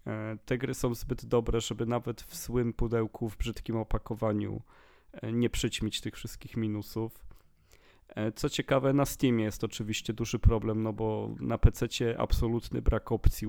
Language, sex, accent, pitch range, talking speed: Polish, male, native, 110-120 Hz, 145 wpm